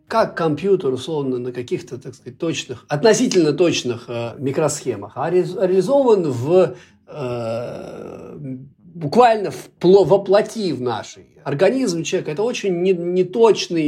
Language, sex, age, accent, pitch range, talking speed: Russian, male, 50-69, native, 140-195 Hz, 115 wpm